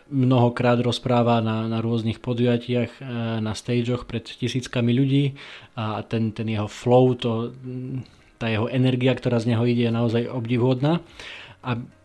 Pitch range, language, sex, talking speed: 110-130 Hz, Slovak, male, 140 wpm